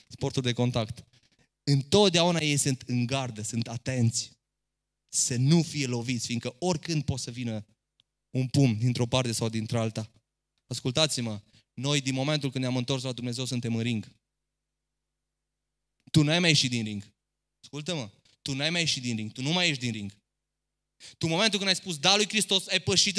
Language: Romanian